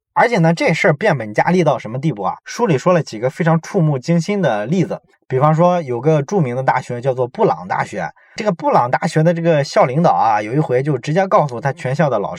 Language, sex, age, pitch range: Chinese, male, 20-39, 130-165 Hz